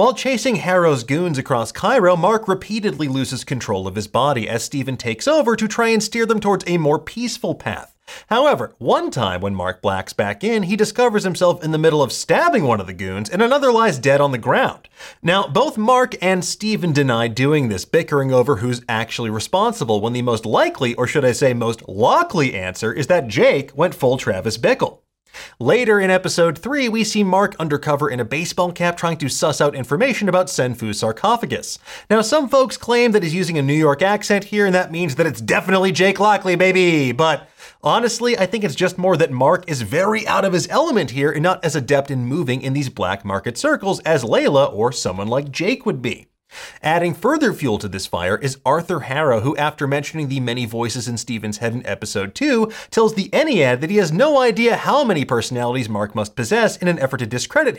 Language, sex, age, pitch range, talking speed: English, male, 30-49, 125-210 Hz, 205 wpm